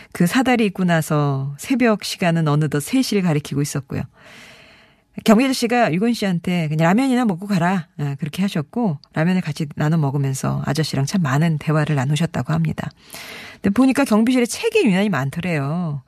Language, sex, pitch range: Korean, female, 150-215 Hz